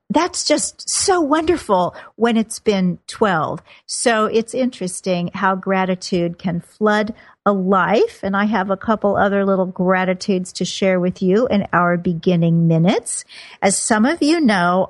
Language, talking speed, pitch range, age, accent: English, 155 wpm, 185-235 Hz, 50-69, American